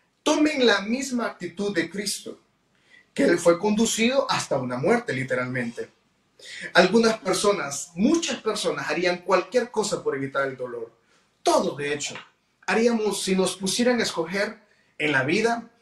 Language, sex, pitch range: Spanish, male, 150-225 Hz